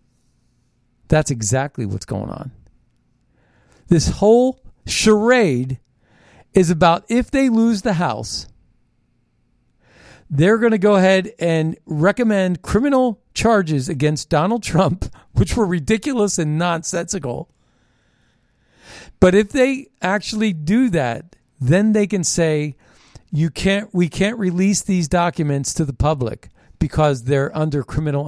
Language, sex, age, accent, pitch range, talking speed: English, male, 40-59, American, 140-200 Hz, 120 wpm